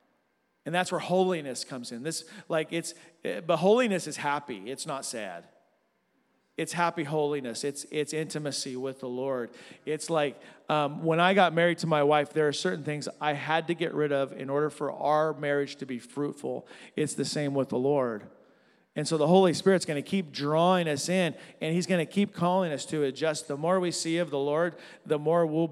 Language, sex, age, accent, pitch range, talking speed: English, male, 40-59, American, 150-185 Hz, 210 wpm